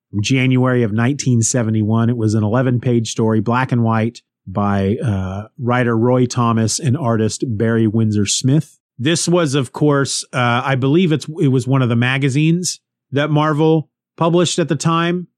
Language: English